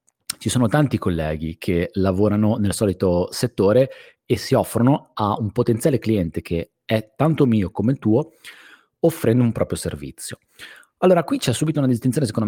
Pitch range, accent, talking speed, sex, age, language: 95-125 Hz, native, 165 wpm, male, 30-49, Italian